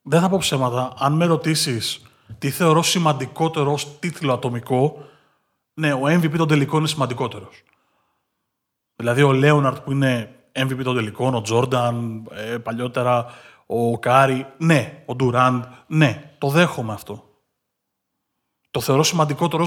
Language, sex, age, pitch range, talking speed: Greek, male, 30-49, 125-155 Hz, 130 wpm